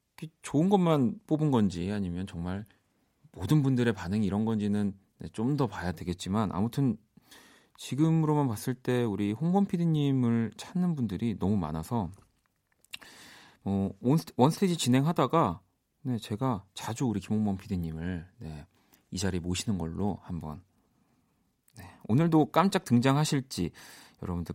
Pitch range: 95-145 Hz